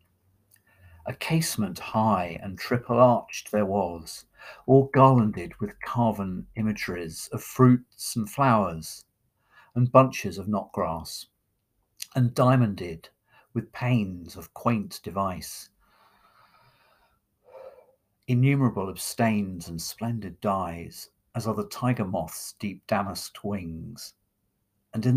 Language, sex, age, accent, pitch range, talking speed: English, male, 50-69, British, 95-120 Hz, 100 wpm